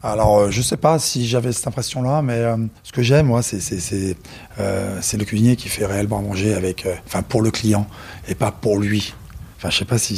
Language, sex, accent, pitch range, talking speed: French, male, French, 95-120 Hz, 260 wpm